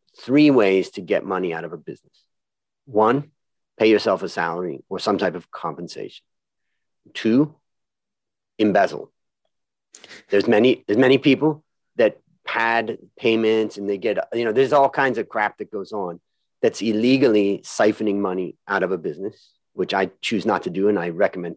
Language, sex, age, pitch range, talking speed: English, male, 40-59, 100-130 Hz, 165 wpm